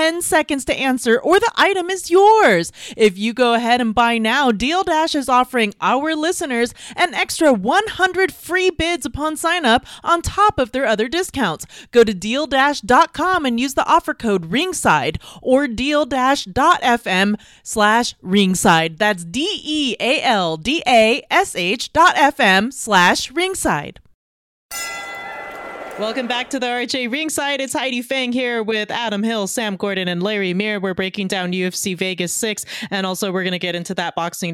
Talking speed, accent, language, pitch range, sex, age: 170 wpm, American, English, 185-270 Hz, female, 30-49